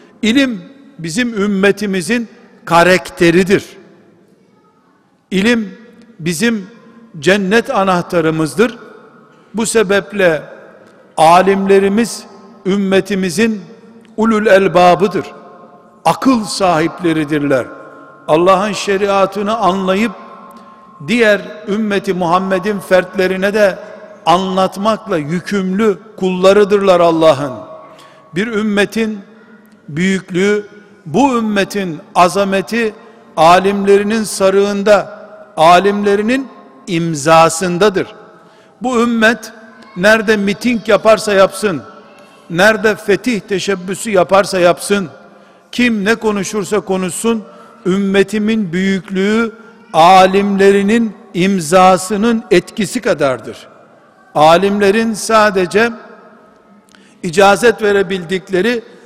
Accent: native